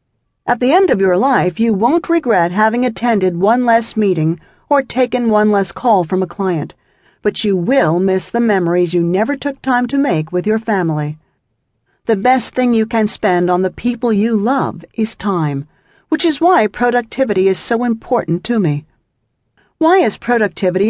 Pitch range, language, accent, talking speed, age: 175-245 Hz, English, American, 180 wpm, 50-69